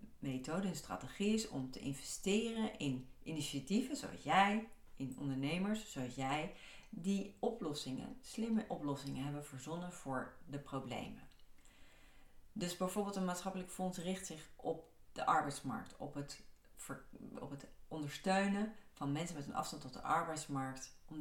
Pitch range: 140-190 Hz